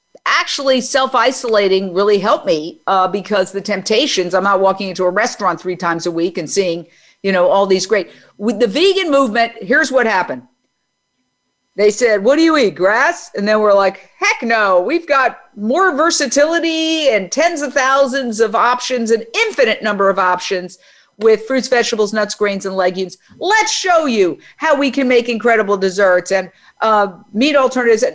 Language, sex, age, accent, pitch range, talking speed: English, female, 50-69, American, 210-275 Hz, 175 wpm